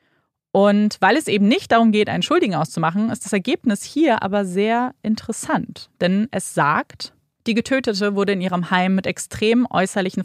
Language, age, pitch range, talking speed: German, 20-39, 170-215 Hz, 170 wpm